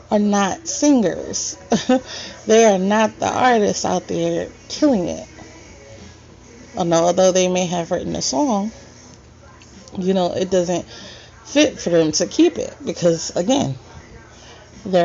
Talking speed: 130 wpm